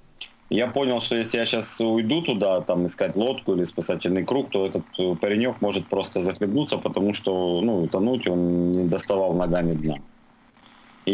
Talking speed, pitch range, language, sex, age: 160 wpm, 90-115 Hz, Russian, male, 30-49